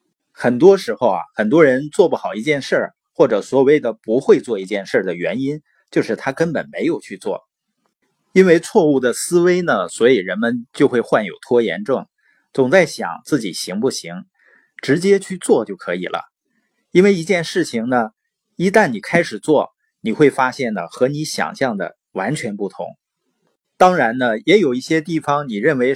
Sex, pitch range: male, 130-190 Hz